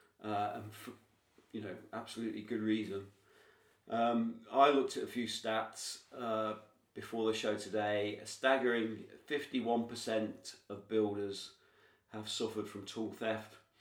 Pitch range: 105-125 Hz